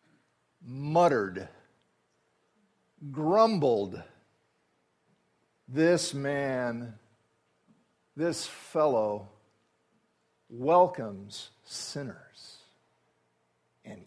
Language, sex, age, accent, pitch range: English, male, 50-69, American, 125-190 Hz